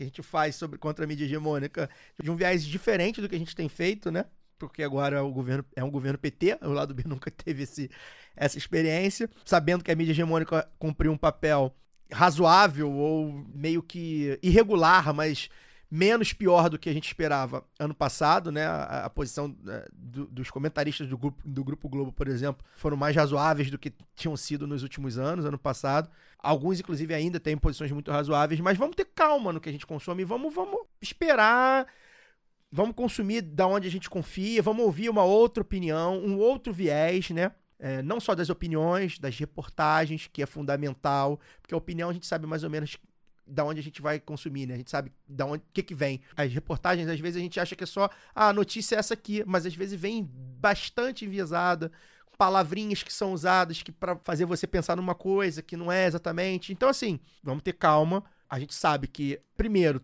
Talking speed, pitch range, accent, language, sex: 200 wpm, 145-185 Hz, Brazilian, Portuguese, male